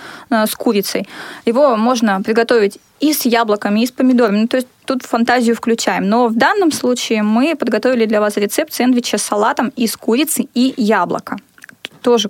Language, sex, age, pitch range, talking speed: Russian, female, 20-39, 215-255 Hz, 165 wpm